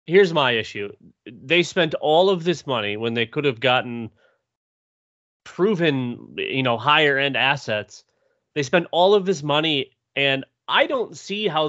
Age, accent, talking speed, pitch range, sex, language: 30-49, American, 155 wpm, 130-185 Hz, male, English